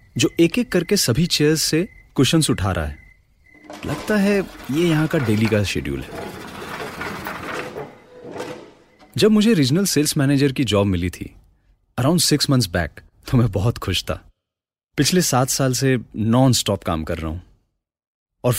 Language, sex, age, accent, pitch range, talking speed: Hindi, male, 30-49, native, 90-140 Hz, 160 wpm